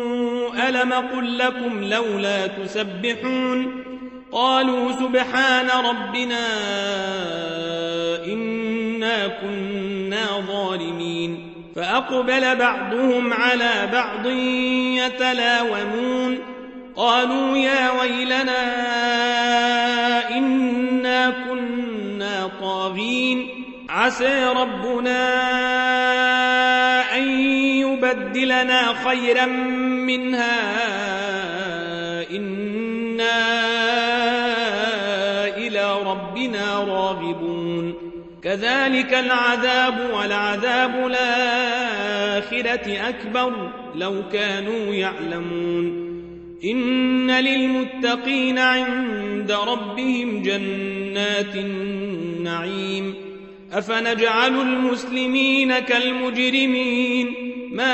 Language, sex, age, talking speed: Arabic, male, 40-59, 50 wpm